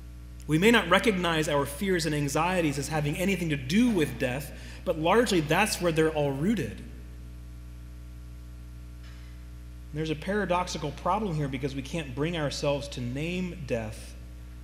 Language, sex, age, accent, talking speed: English, male, 30-49, American, 145 wpm